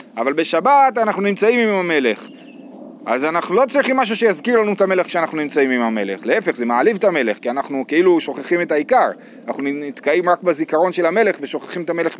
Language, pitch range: Hebrew, 150-235 Hz